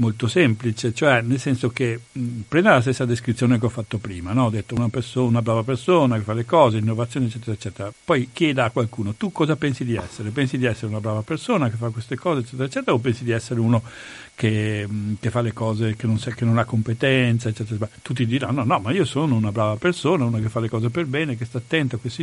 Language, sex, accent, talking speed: Italian, male, native, 250 wpm